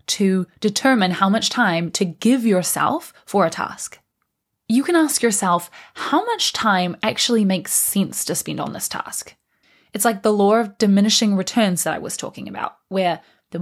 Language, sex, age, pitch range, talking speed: English, female, 20-39, 190-245 Hz, 175 wpm